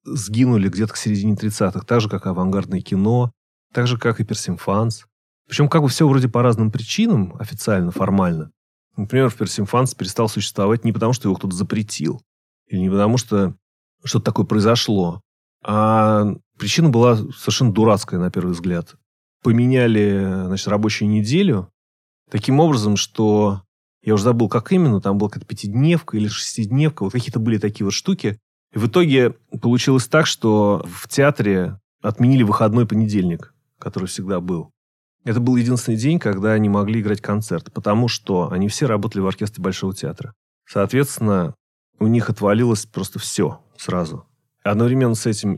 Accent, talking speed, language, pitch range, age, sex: native, 155 wpm, Russian, 100-120 Hz, 30-49, male